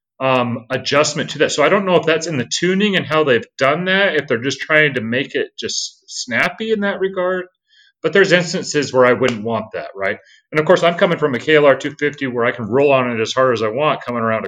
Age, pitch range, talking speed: 30-49, 125-175 Hz, 255 wpm